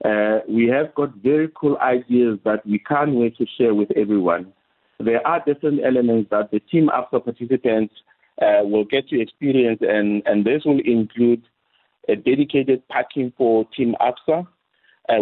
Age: 50-69